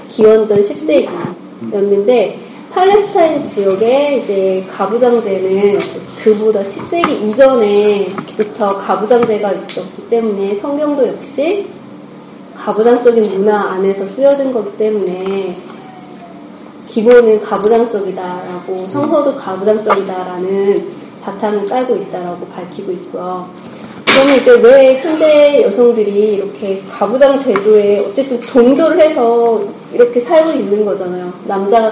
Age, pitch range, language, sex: 30-49, 195-270 Hz, Korean, female